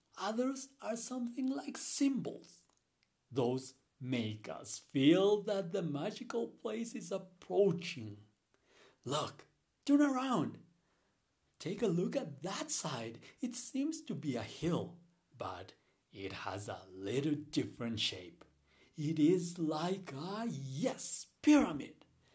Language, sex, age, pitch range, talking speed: Spanish, male, 60-79, 125-210 Hz, 115 wpm